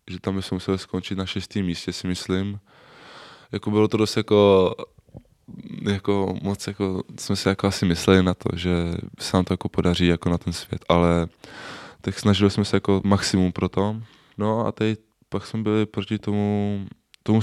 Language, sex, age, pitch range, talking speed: Czech, male, 20-39, 90-105 Hz, 185 wpm